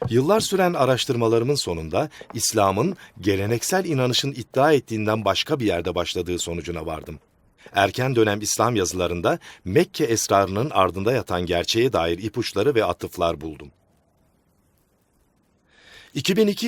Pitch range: 100-145 Hz